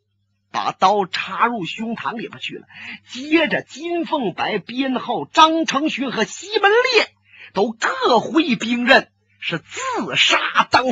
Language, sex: Chinese, male